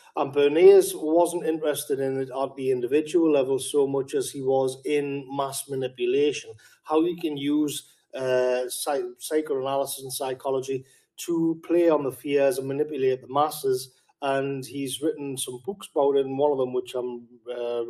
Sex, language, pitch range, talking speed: male, English, 130-175 Hz, 170 wpm